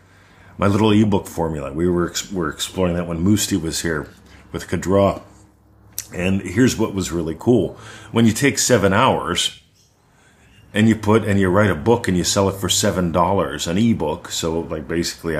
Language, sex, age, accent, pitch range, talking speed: English, male, 40-59, American, 85-105 Hz, 170 wpm